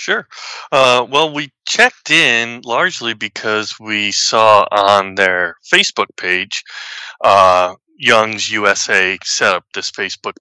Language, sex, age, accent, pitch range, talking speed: English, male, 30-49, American, 100-135 Hz, 120 wpm